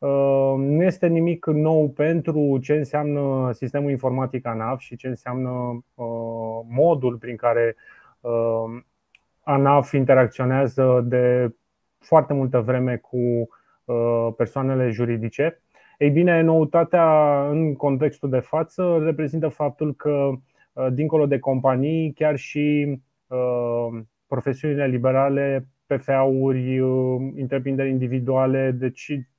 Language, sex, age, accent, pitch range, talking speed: Romanian, male, 20-39, native, 125-150 Hz, 95 wpm